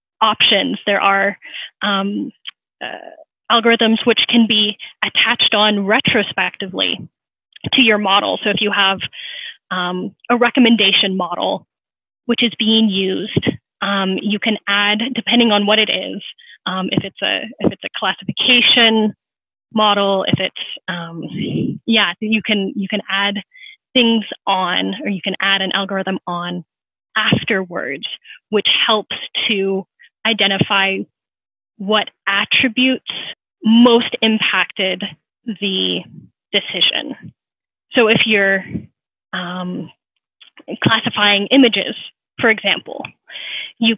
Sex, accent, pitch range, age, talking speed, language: female, American, 195-230 Hz, 10-29, 115 wpm, English